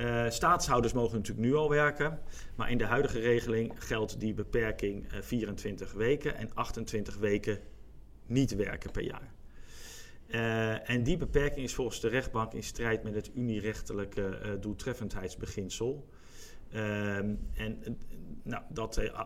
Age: 50-69